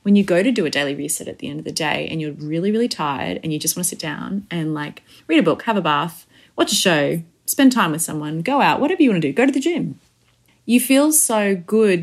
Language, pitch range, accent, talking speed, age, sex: English, 160-205 Hz, Australian, 280 wpm, 20-39, female